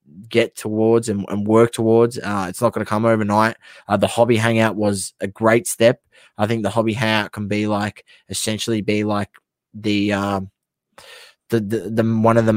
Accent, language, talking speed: Australian, English, 190 wpm